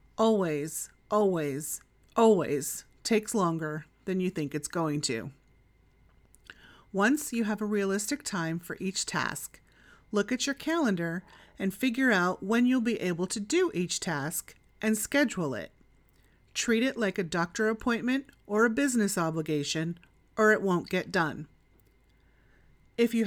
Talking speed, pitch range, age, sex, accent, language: 140 wpm, 170-220 Hz, 30-49, female, American, English